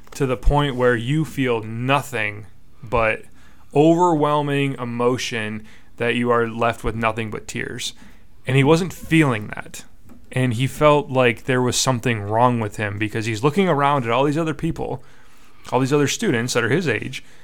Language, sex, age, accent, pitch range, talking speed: English, male, 20-39, American, 110-135 Hz, 170 wpm